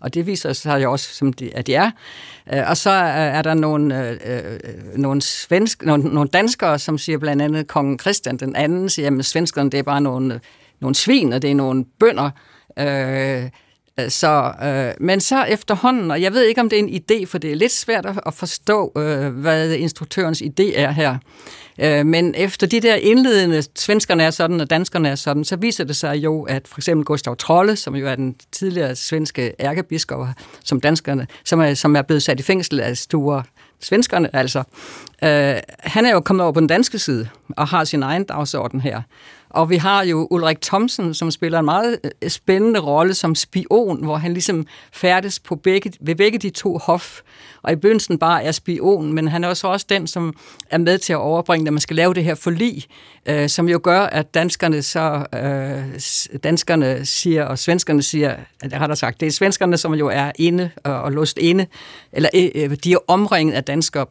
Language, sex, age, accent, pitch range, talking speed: Danish, female, 60-79, native, 140-180 Hz, 200 wpm